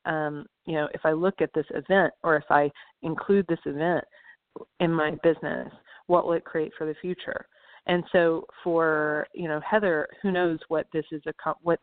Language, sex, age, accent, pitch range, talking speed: English, female, 40-59, American, 150-185 Hz, 180 wpm